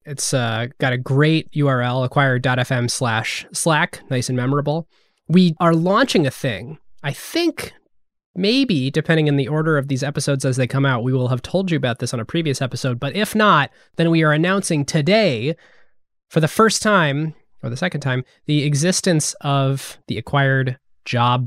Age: 20-39